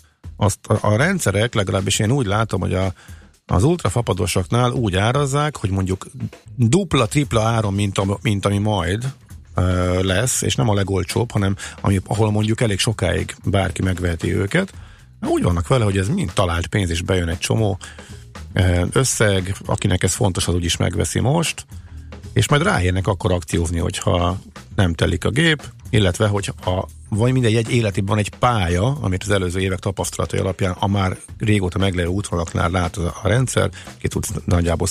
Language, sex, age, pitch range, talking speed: Hungarian, male, 50-69, 90-115 Hz, 155 wpm